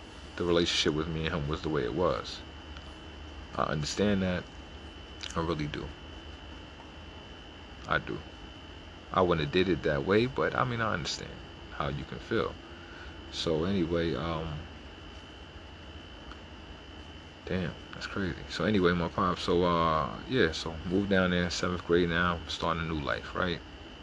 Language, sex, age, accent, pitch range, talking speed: English, male, 40-59, American, 80-85 Hz, 150 wpm